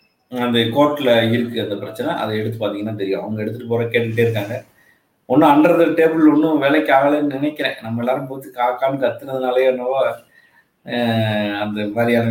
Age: 20-39